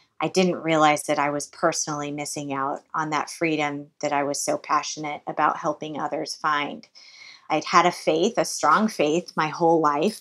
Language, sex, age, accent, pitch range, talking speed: English, female, 30-49, American, 150-180 Hz, 180 wpm